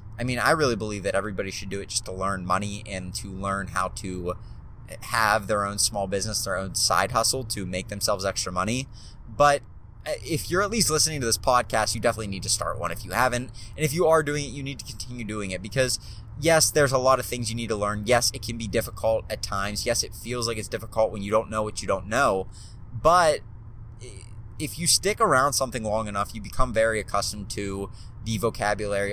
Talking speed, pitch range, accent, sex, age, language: 225 wpm, 105-130 Hz, American, male, 20-39, English